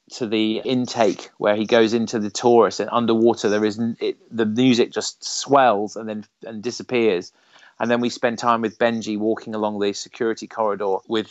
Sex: male